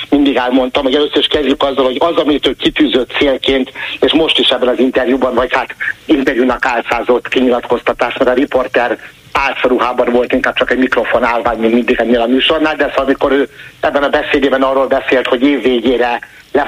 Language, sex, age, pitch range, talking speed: Hungarian, male, 60-79, 125-145 Hz, 185 wpm